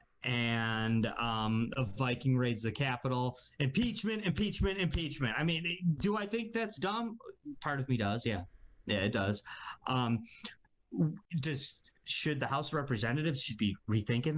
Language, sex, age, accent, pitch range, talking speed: English, male, 20-39, American, 105-140 Hz, 145 wpm